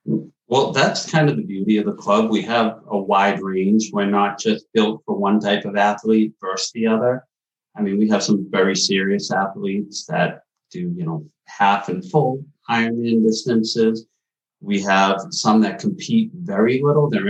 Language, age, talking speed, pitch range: English, 30-49, 175 wpm, 100-135 Hz